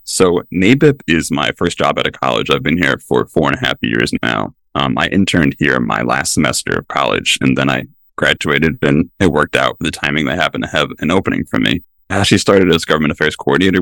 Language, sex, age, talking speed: English, male, 20-39, 235 wpm